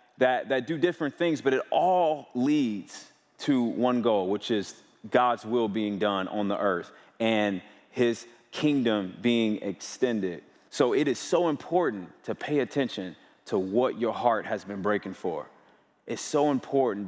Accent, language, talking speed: American, English, 160 wpm